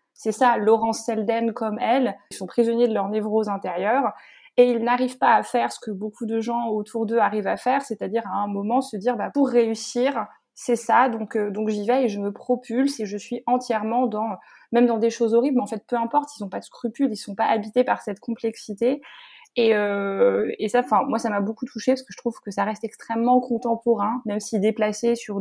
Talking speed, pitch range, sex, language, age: 235 wpm, 205-245 Hz, female, French, 20-39